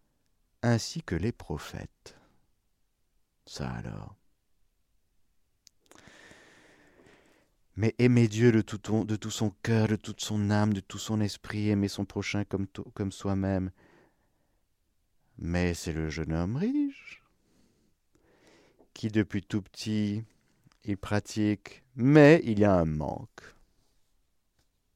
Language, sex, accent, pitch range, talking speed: French, male, French, 80-110 Hz, 105 wpm